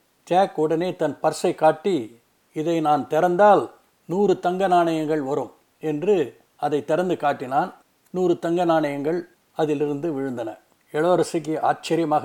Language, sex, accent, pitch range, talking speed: Tamil, male, native, 150-185 Hz, 110 wpm